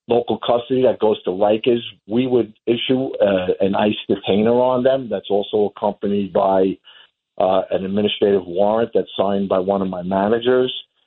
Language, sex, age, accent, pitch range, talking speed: English, male, 50-69, American, 100-115 Hz, 155 wpm